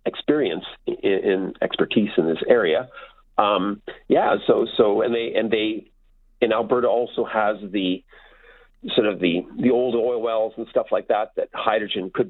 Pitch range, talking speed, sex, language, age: 105-155 Hz, 165 wpm, male, English, 40-59